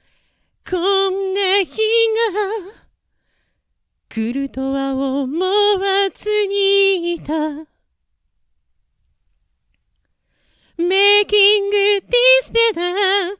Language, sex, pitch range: Japanese, female, 300-420 Hz